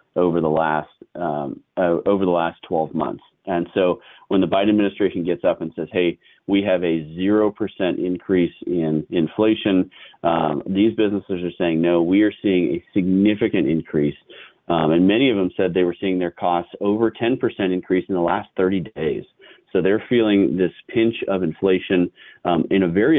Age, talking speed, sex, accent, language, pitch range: 40-59, 185 wpm, male, American, English, 90-105 Hz